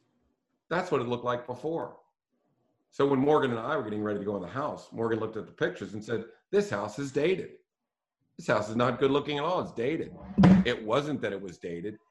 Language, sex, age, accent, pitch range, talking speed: English, male, 50-69, American, 110-135 Hz, 230 wpm